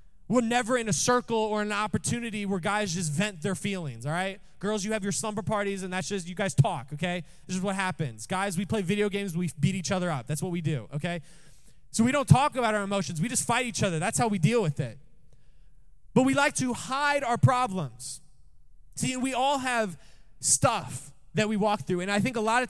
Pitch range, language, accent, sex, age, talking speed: 160-225 Hz, English, American, male, 20-39, 235 wpm